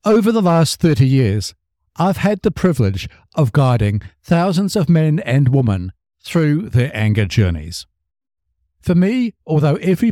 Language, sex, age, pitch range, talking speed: English, male, 60-79, 100-165 Hz, 140 wpm